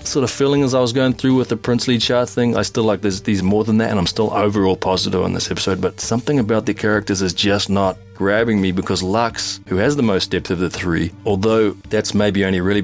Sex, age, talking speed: male, 30-49, 250 wpm